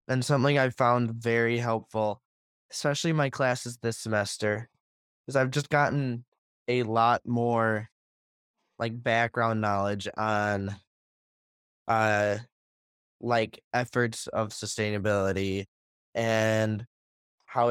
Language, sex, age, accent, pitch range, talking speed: English, male, 10-29, American, 105-130 Hz, 100 wpm